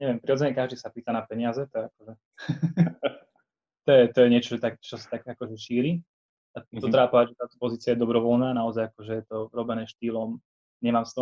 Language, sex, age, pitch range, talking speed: Slovak, male, 20-39, 115-130 Hz, 175 wpm